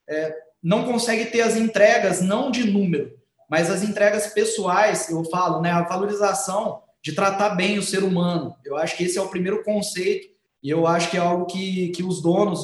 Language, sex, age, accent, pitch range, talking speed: Portuguese, male, 20-39, Brazilian, 170-205 Hz, 200 wpm